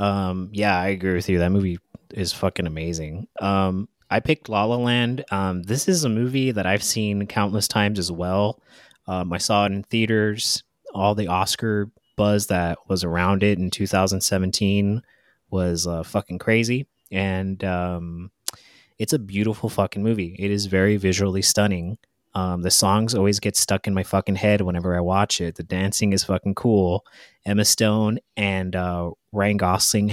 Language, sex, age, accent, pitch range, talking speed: English, male, 20-39, American, 95-110 Hz, 170 wpm